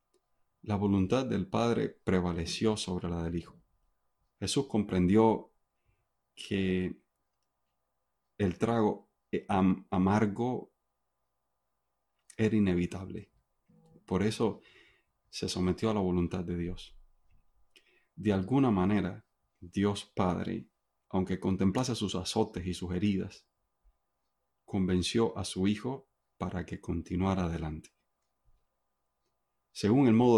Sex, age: male, 30-49